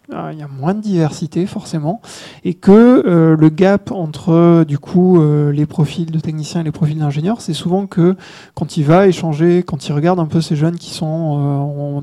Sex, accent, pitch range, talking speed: male, French, 155-185 Hz, 210 wpm